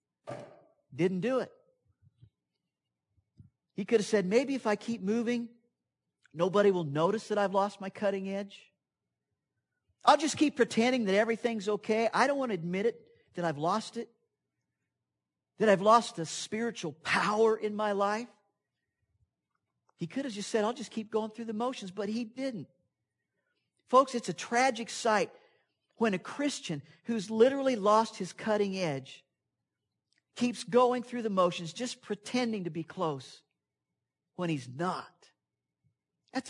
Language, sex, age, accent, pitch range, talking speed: English, male, 50-69, American, 180-235 Hz, 150 wpm